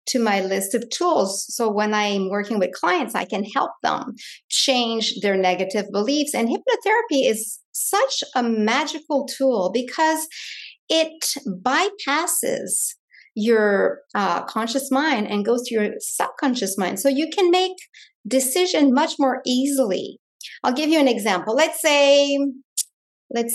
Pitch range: 210-280 Hz